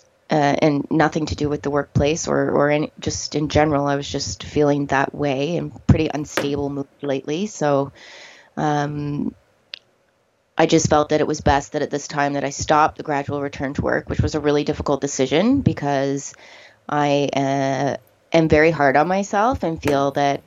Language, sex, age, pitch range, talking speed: English, female, 20-39, 140-150 Hz, 180 wpm